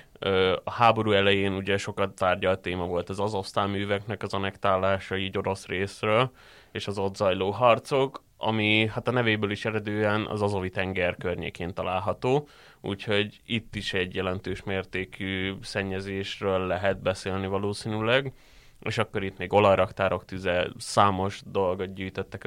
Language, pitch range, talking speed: Hungarian, 95-110 Hz, 135 wpm